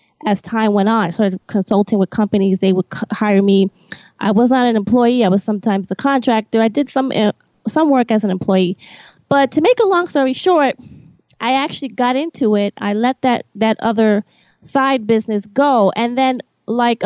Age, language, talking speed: 20-39, English, 195 wpm